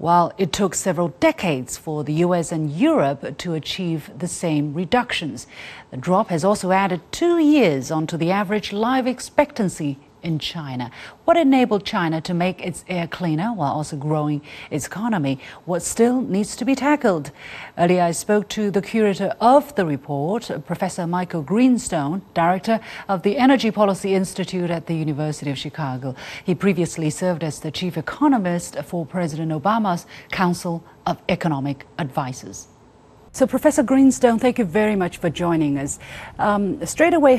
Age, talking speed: 40-59, 155 wpm